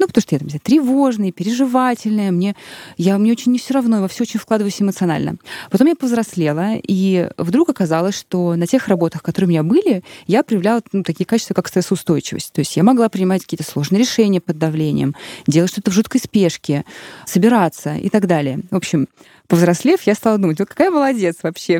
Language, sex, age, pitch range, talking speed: Russian, female, 20-39, 170-225 Hz, 195 wpm